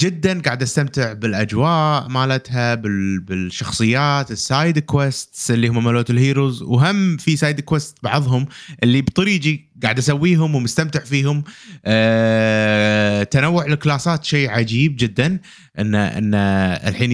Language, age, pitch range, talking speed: Arabic, 30-49, 120-165 Hz, 110 wpm